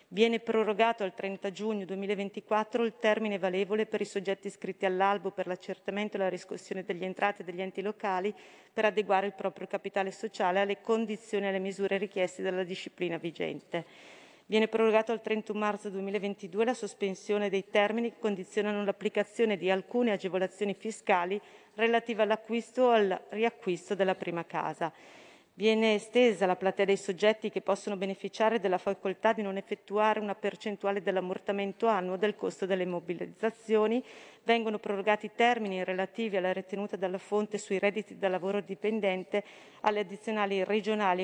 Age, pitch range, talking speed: 40-59, 190-215 Hz, 150 wpm